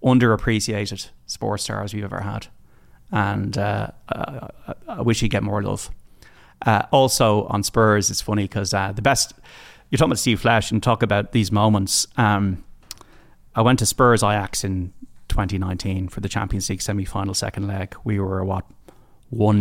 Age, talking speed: 30-49, 170 wpm